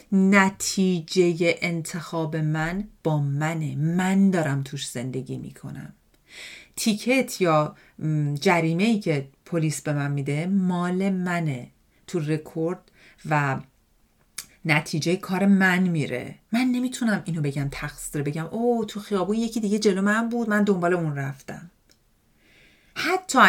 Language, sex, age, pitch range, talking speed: Persian, female, 40-59, 150-205 Hz, 120 wpm